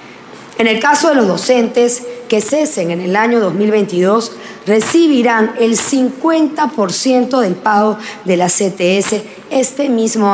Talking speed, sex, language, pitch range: 130 wpm, female, Spanish, 200-260 Hz